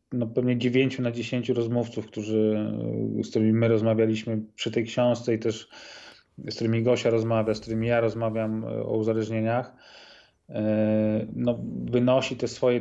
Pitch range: 105-115 Hz